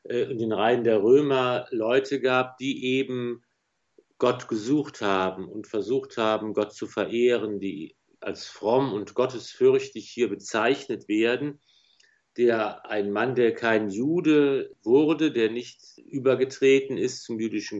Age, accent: 50-69, German